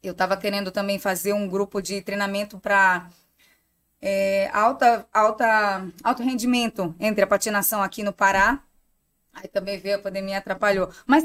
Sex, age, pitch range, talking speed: female, 20-39, 195-250 Hz, 150 wpm